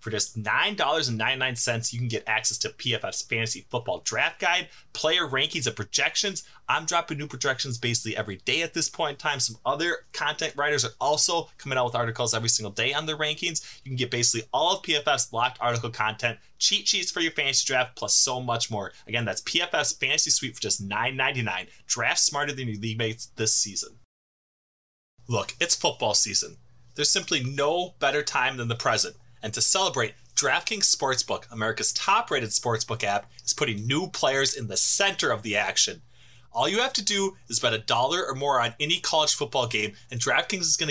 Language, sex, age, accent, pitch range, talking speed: English, male, 20-39, American, 115-150 Hz, 195 wpm